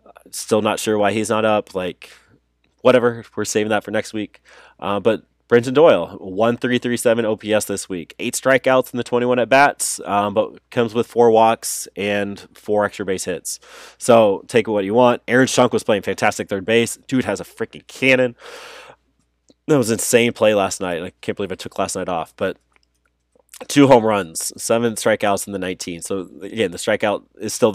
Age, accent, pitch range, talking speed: 20-39, American, 95-120 Hz, 195 wpm